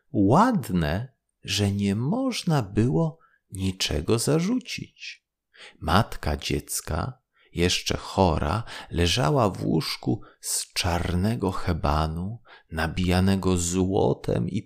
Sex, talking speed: male, 80 wpm